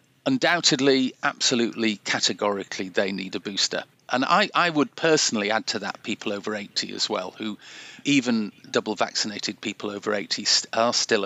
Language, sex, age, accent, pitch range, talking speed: English, male, 40-59, British, 110-135 Hz, 160 wpm